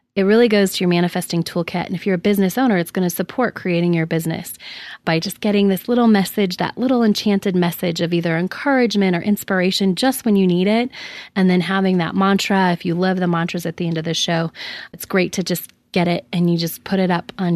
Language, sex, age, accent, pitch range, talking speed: English, female, 20-39, American, 175-200 Hz, 235 wpm